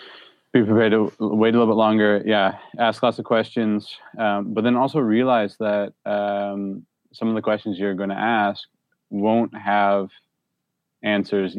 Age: 20-39